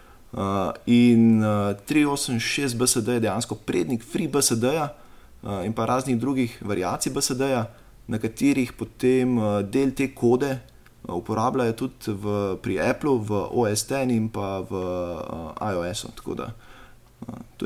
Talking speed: 110 wpm